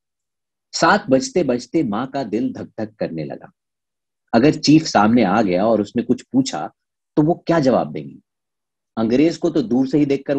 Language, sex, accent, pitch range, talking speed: Hindi, male, native, 120-170 Hz, 180 wpm